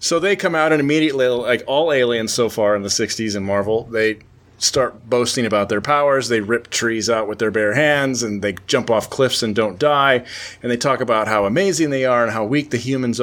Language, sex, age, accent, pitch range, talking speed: English, male, 30-49, American, 110-135 Hz, 230 wpm